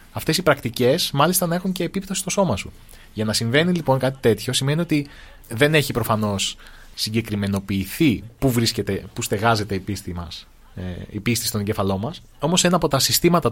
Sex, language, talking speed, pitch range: male, Greek, 180 wpm, 110-150 Hz